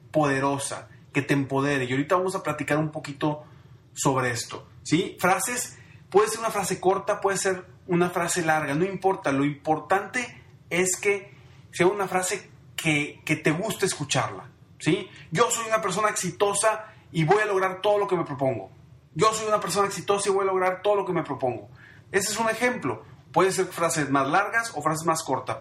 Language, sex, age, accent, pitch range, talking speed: Spanish, male, 30-49, Mexican, 135-195 Hz, 190 wpm